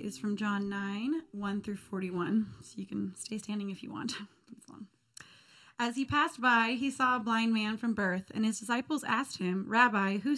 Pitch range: 195-245 Hz